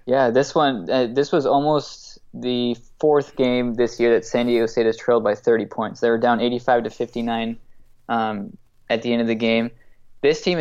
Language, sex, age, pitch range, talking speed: English, male, 20-39, 115-130 Hz, 205 wpm